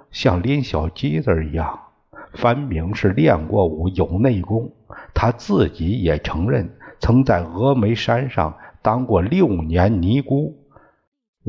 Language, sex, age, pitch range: Chinese, male, 60-79, 95-140 Hz